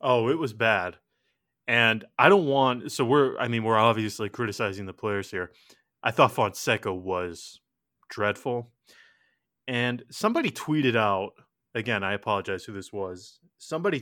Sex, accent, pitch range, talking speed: male, American, 105-125 Hz, 145 wpm